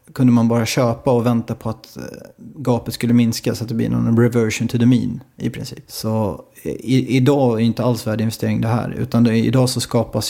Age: 30-49